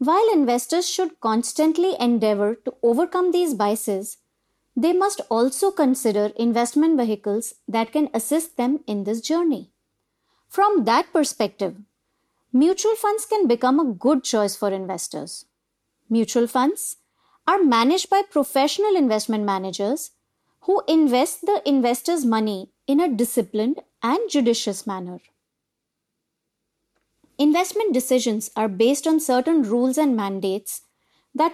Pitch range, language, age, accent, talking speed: 220-330 Hz, English, 30-49, Indian, 120 wpm